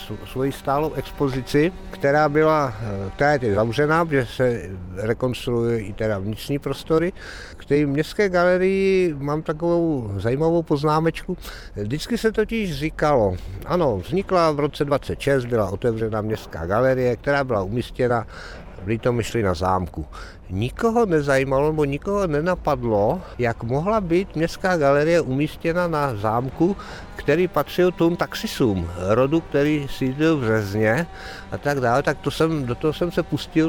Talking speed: 135 wpm